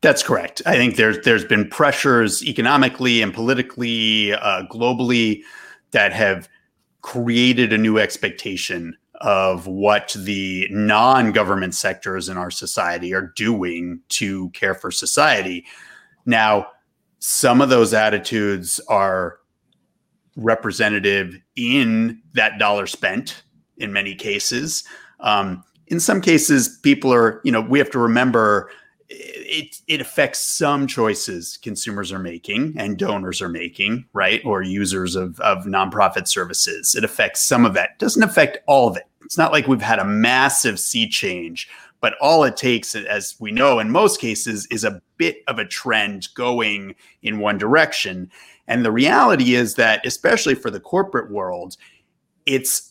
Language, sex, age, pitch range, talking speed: English, male, 30-49, 100-145 Hz, 145 wpm